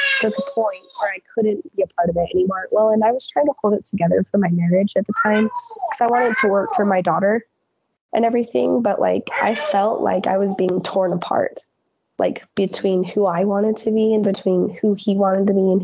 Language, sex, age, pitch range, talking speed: English, female, 20-39, 180-220 Hz, 235 wpm